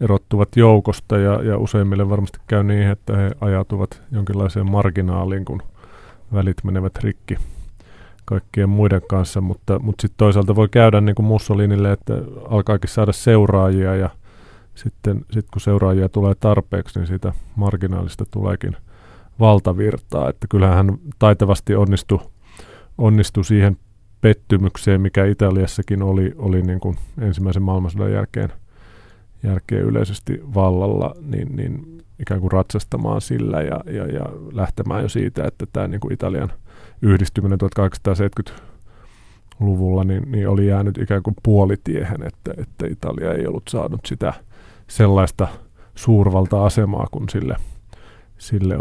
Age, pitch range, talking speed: 30-49, 95-110 Hz, 120 wpm